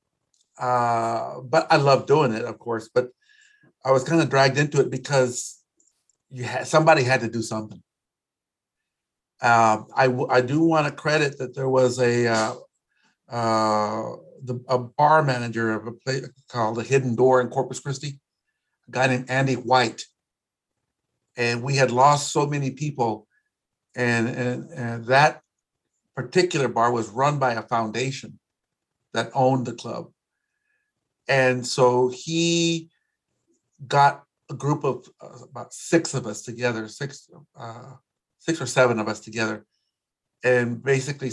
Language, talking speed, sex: English, 145 wpm, male